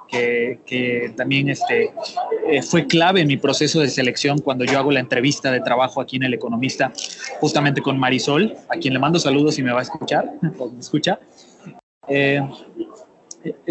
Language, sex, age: Spanish, male, 30-49